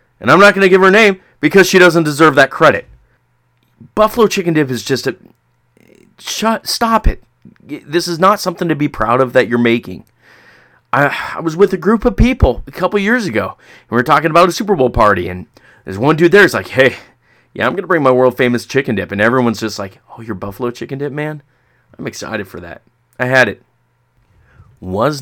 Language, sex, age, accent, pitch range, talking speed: English, male, 30-49, American, 105-145 Hz, 215 wpm